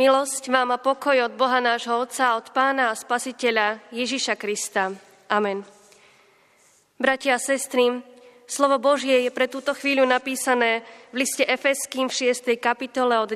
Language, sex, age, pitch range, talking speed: Slovak, female, 20-39, 230-260 Hz, 145 wpm